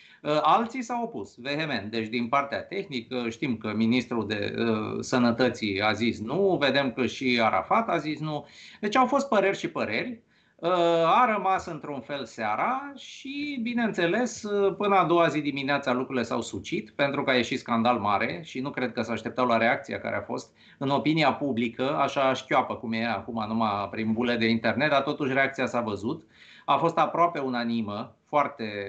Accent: native